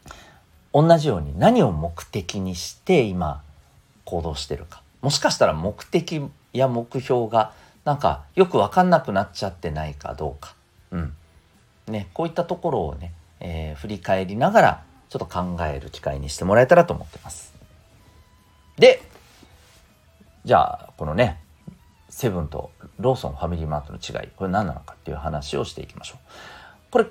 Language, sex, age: Japanese, male, 40-59